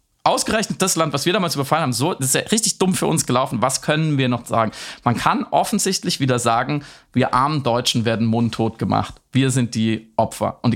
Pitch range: 125-165 Hz